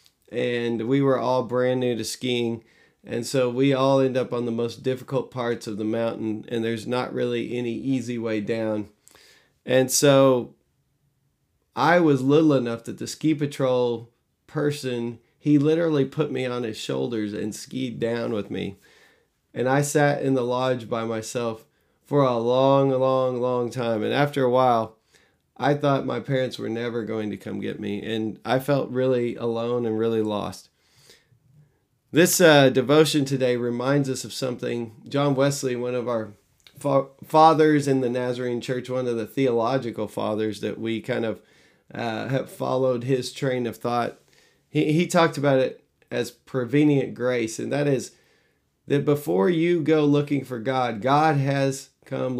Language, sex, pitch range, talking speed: English, male, 115-140 Hz, 165 wpm